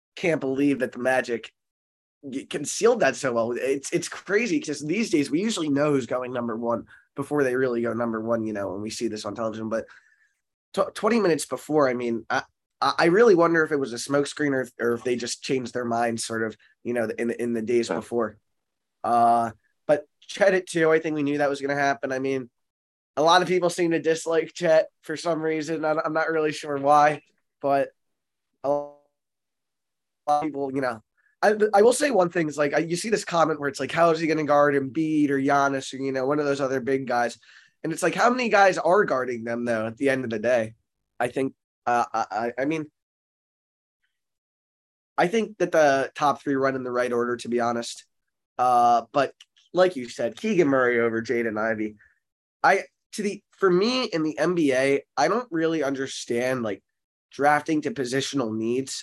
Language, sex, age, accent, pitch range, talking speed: English, male, 20-39, American, 120-160 Hz, 205 wpm